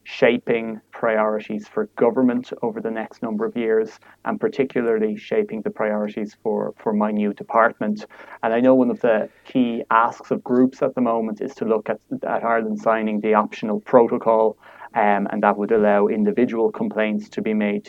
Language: English